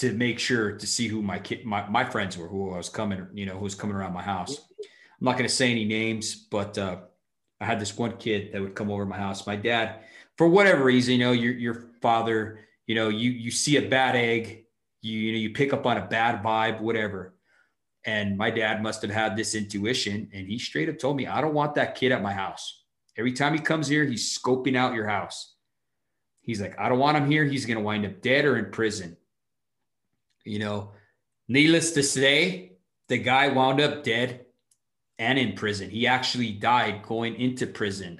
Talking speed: 220 wpm